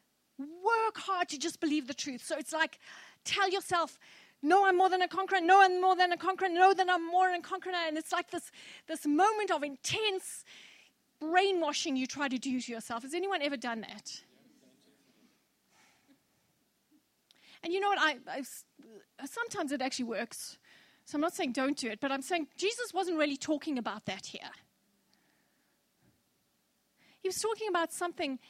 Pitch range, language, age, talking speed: 285-380 Hz, English, 30-49, 175 wpm